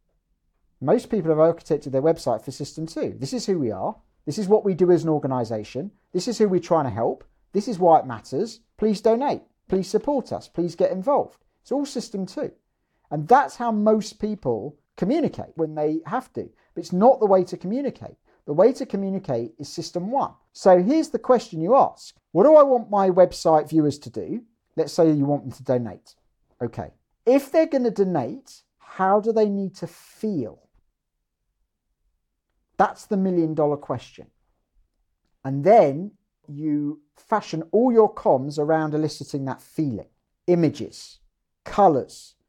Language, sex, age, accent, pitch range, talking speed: English, male, 50-69, British, 145-210 Hz, 170 wpm